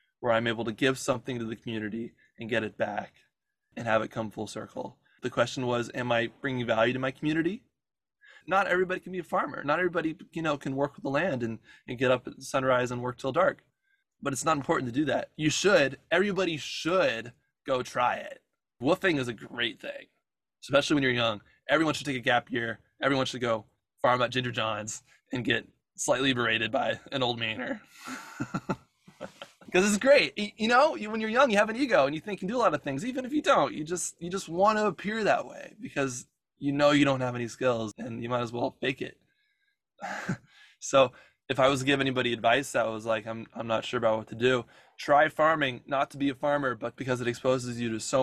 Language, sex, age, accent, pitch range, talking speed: English, male, 20-39, American, 120-165 Hz, 225 wpm